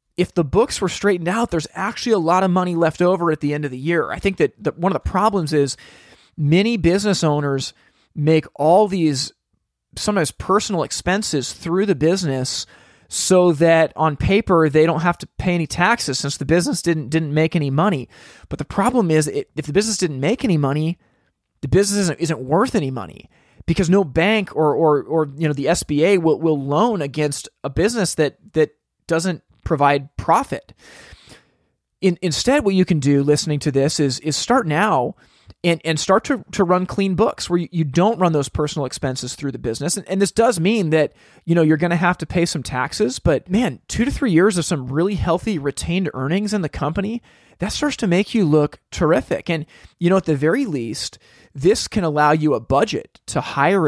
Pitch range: 150-190 Hz